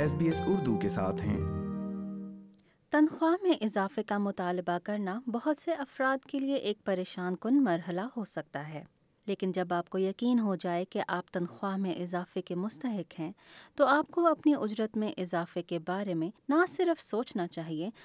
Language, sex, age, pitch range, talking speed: Urdu, female, 30-49, 170-220 Hz, 165 wpm